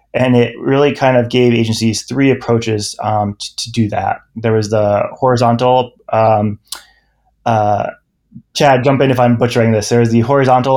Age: 20-39